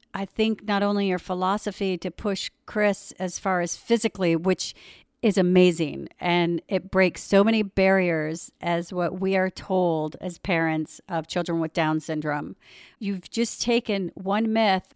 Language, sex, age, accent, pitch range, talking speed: English, female, 50-69, American, 180-210 Hz, 155 wpm